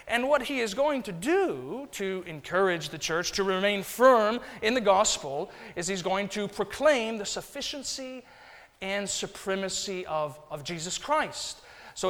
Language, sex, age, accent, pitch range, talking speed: English, male, 40-59, American, 175-235 Hz, 155 wpm